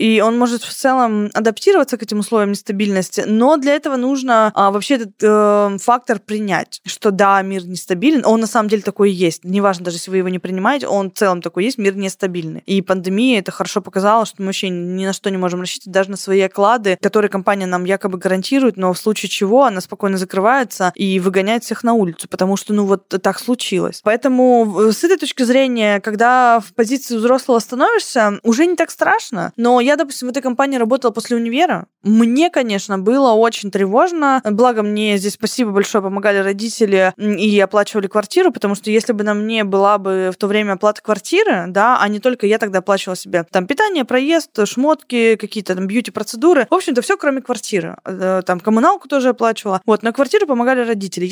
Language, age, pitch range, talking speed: Russian, 20-39, 195-250 Hz, 195 wpm